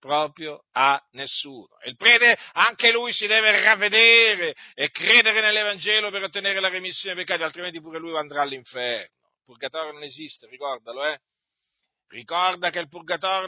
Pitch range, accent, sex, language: 130-180 Hz, native, male, Italian